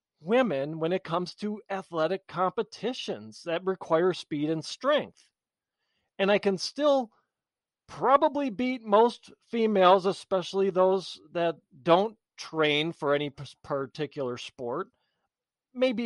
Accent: American